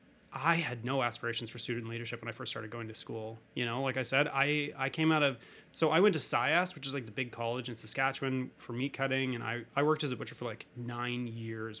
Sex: male